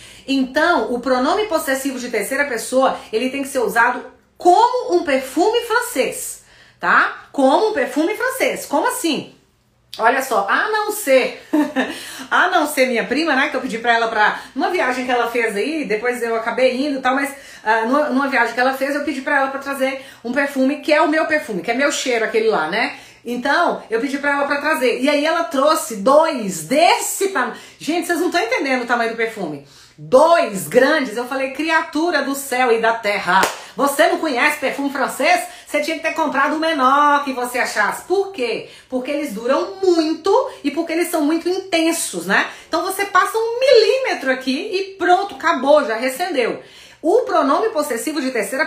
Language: Portuguese